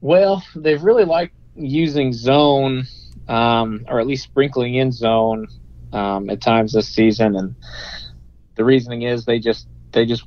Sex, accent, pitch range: male, American, 110-135 Hz